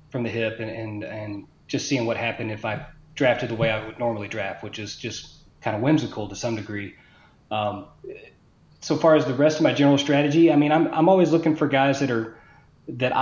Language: English